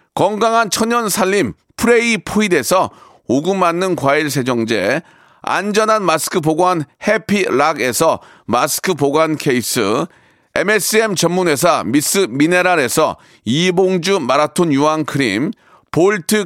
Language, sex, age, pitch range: Korean, male, 40-59, 160-210 Hz